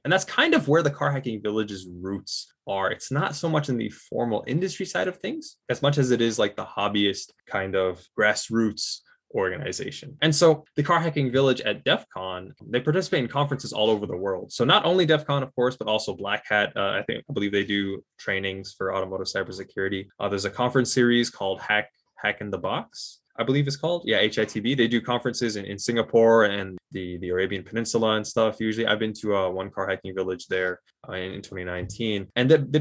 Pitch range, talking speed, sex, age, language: 100-130 Hz, 215 wpm, male, 20-39, English